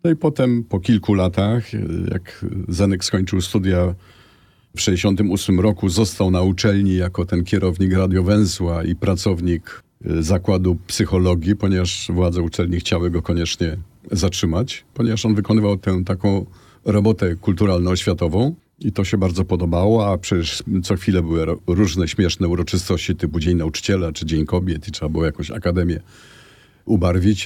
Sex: male